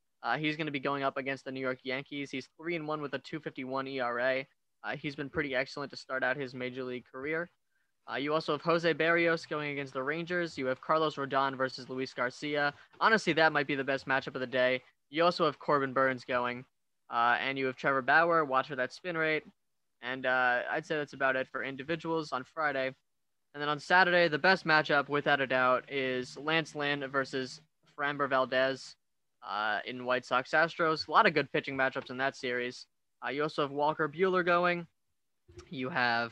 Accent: American